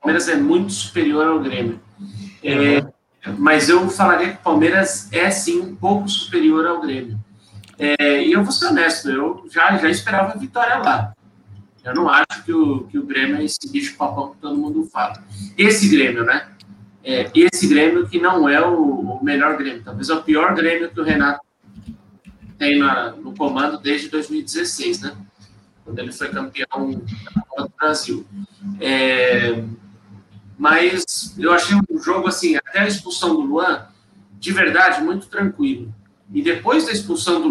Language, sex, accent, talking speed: Portuguese, male, Brazilian, 170 wpm